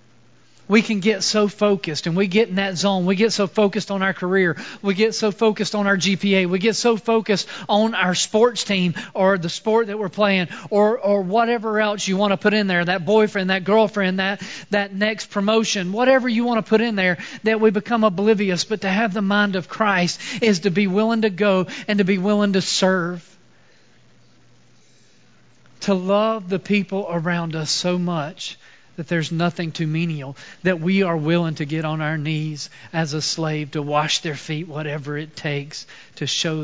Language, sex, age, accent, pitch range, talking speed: English, male, 40-59, American, 150-205 Hz, 200 wpm